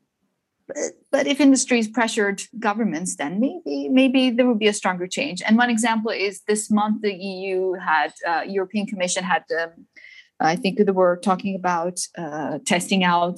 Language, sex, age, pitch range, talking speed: English, female, 20-39, 180-225 Hz, 165 wpm